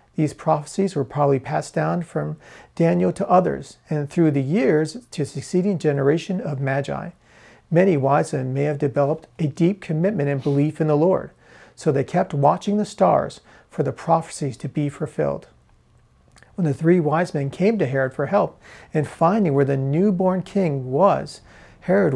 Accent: American